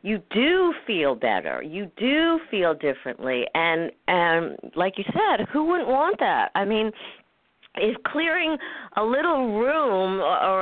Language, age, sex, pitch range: English, 50-69, female, 140-220 Hz